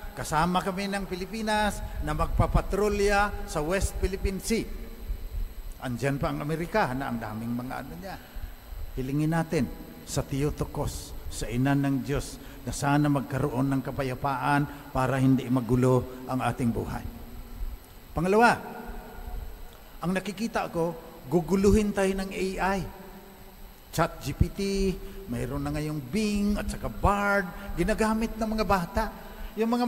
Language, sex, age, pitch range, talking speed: English, male, 50-69, 145-200 Hz, 125 wpm